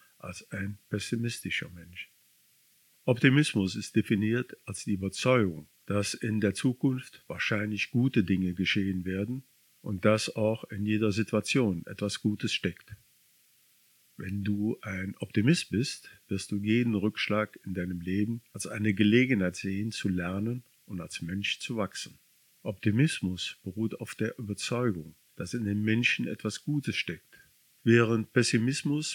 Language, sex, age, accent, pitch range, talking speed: German, male, 50-69, German, 100-115 Hz, 135 wpm